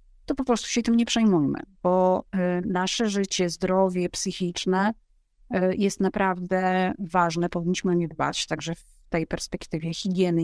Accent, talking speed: native, 140 wpm